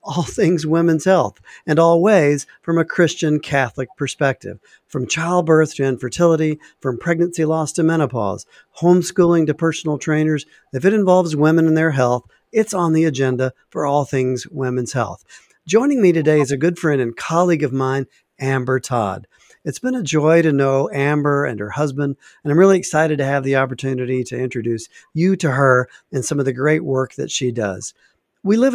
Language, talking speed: English, 180 wpm